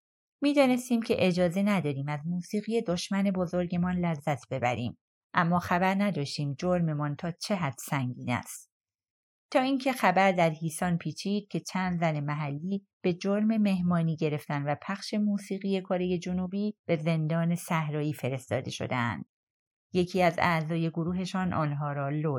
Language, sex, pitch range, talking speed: Persian, female, 155-195 Hz, 135 wpm